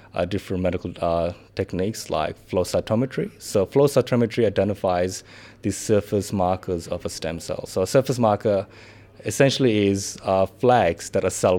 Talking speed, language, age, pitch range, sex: 155 wpm, English, 20-39, 95-115 Hz, male